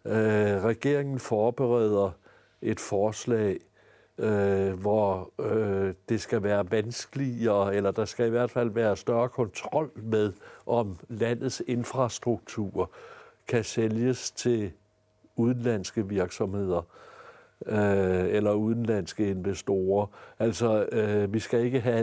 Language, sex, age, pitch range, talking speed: Danish, male, 60-79, 100-115 Hz, 110 wpm